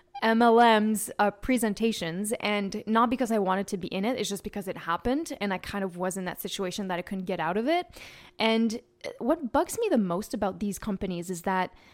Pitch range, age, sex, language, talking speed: 190-235 Hz, 10-29, female, English, 215 wpm